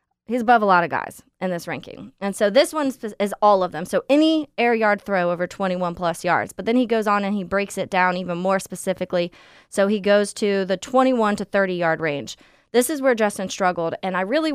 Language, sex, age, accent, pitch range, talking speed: English, female, 20-39, American, 180-215 Hz, 225 wpm